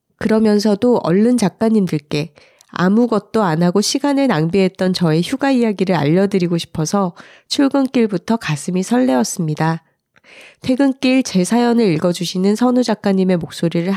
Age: 30-49